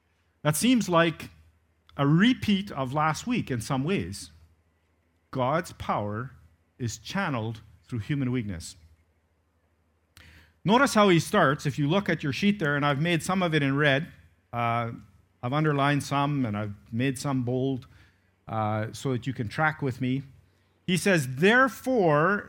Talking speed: 150 wpm